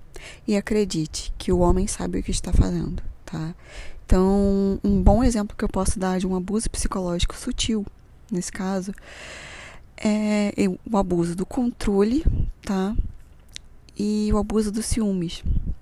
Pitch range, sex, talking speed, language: 180-215 Hz, female, 140 wpm, Portuguese